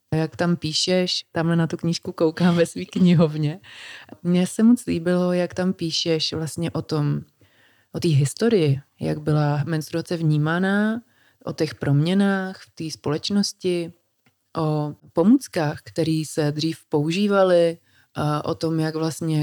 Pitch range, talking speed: 150-175 Hz, 140 wpm